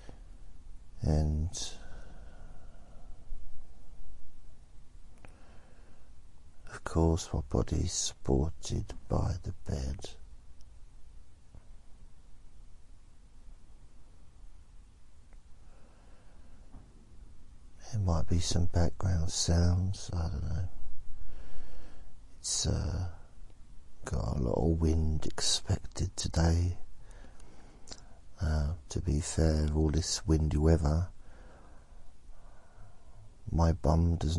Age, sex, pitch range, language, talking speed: 60-79, male, 75-95 Hz, English, 70 wpm